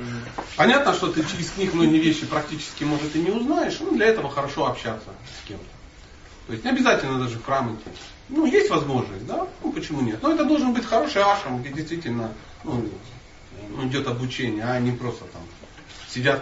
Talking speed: 180 wpm